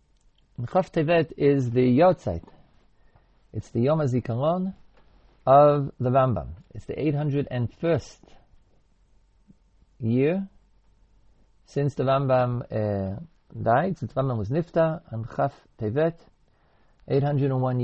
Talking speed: 105 wpm